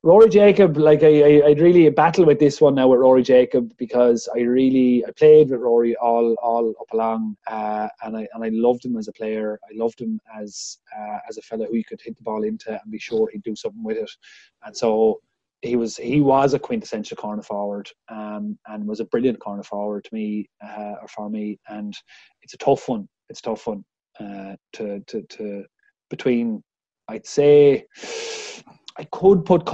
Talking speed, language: 205 wpm, English